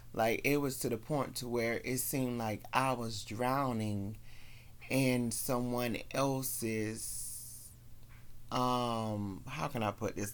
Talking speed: 135 wpm